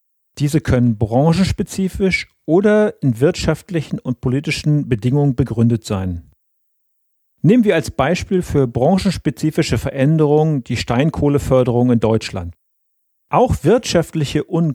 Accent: German